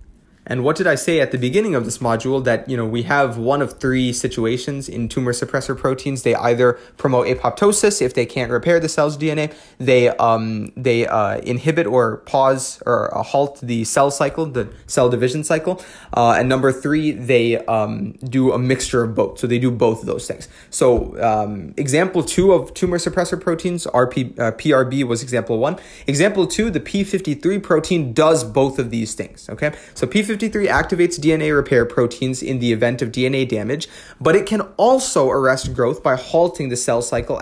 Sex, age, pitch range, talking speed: male, 20-39, 120-150 Hz, 190 wpm